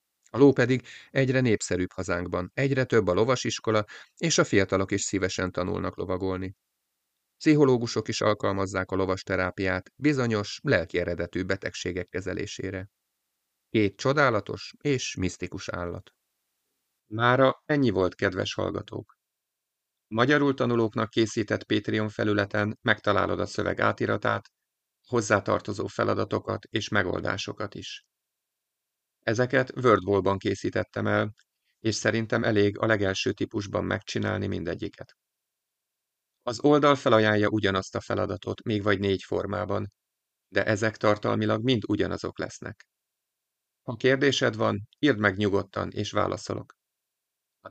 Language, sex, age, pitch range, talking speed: Hungarian, male, 30-49, 95-120 Hz, 110 wpm